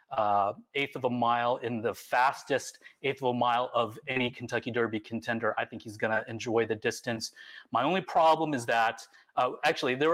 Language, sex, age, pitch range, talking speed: English, male, 30-49, 125-185 Hz, 190 wpm